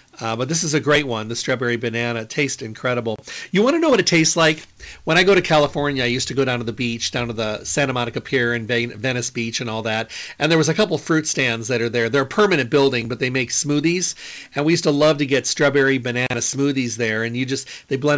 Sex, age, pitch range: male, 40-59, 120-150 Hz